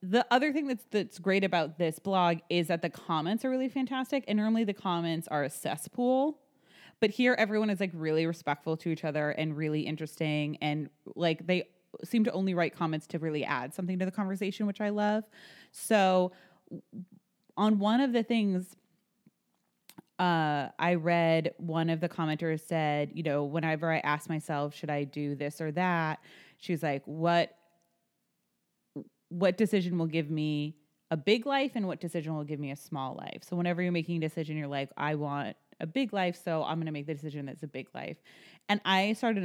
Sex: female